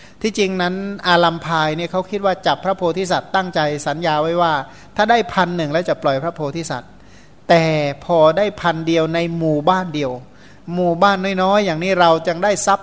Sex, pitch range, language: male, 155-190 Hz, Thai